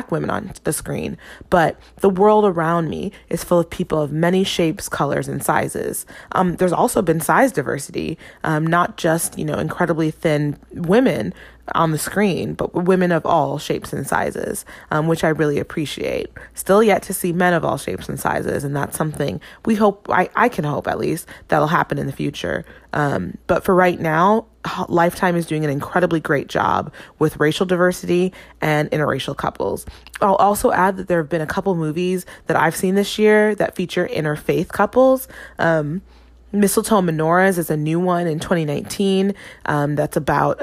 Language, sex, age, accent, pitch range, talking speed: English, female, 20-39, American, 155-190 Hz, 180 wpm